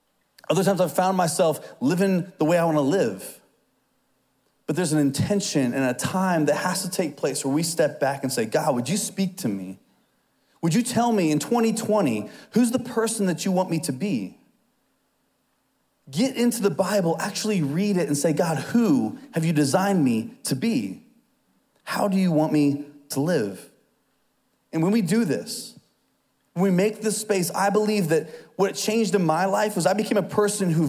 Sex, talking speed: male, 195 wpm